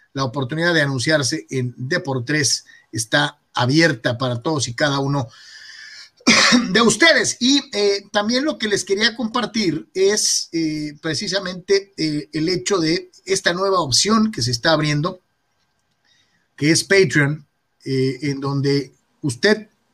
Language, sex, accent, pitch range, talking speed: Spanish, male, Mexican, 140-185 Hz, 140 wpm